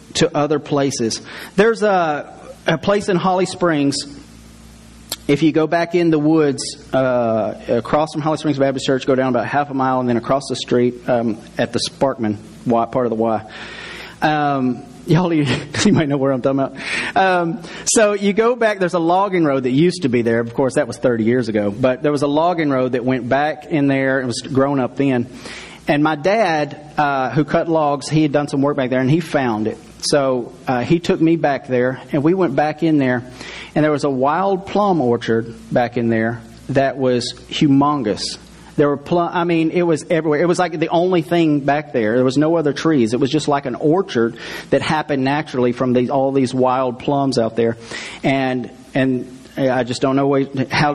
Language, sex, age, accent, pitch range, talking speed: English, male, 30-49, American, 125-160 Hz, 210 wpm